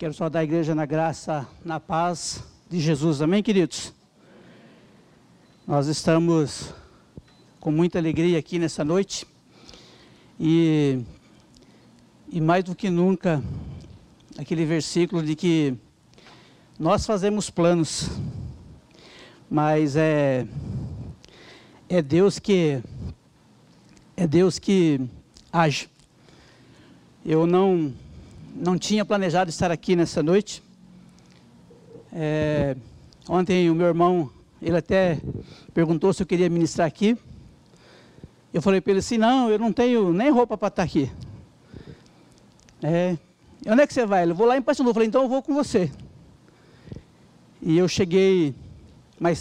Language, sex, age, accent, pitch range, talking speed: Portuguese, male, 60-79, Brazilian, 155-185 Hz, 120 wpm